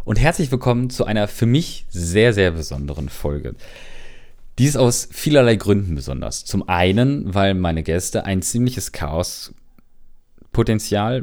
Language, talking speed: German, 135 wpm